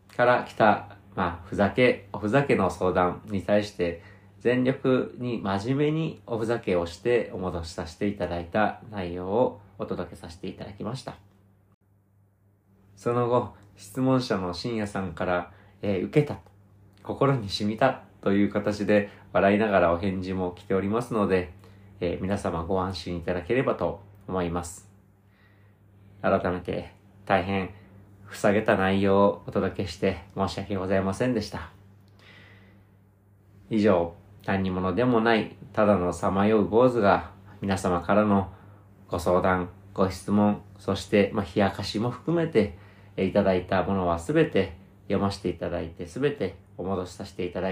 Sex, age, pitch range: male, 40-59, 95-105 Hz